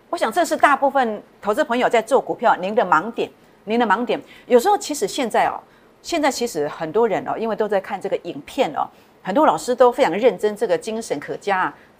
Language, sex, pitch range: Chinese, female, 200-310 Hz